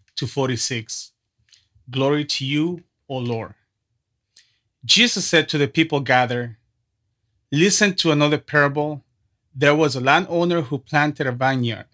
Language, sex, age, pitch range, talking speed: English, male, 30-49, 115-160 Hz, 125 wpm